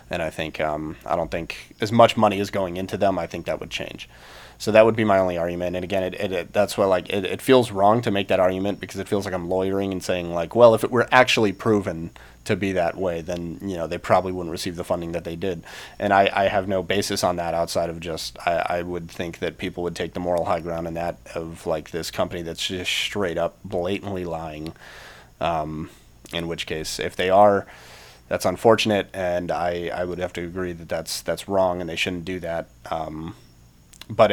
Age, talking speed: 30-49, 235 wpm